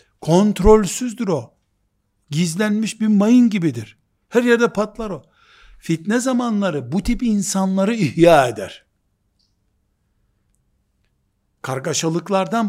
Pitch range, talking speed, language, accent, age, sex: 150-215 Hz, 85 wpm, Turkish, native, 60-79, male